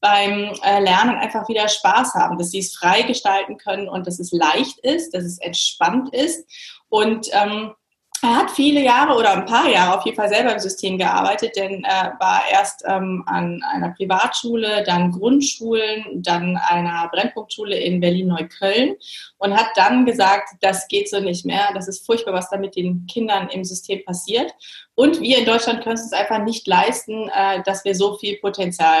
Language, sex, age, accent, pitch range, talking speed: German, female, 20-39, German, 185-230 Hz, 185 wpm